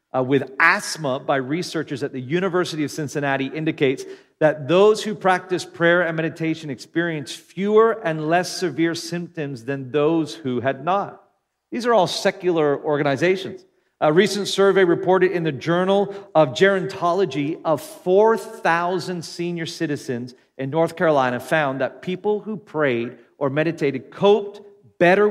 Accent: American